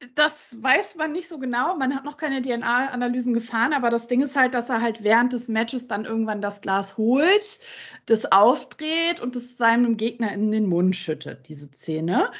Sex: female